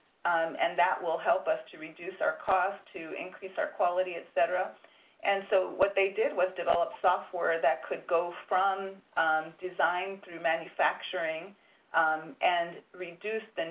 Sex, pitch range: female, 165-205 Hz